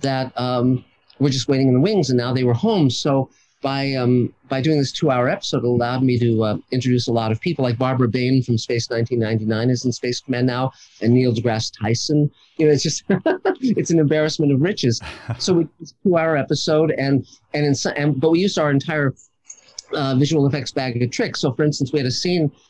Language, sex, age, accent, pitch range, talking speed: English, male, 50-69, American, 120-145 Hz, 220 wpm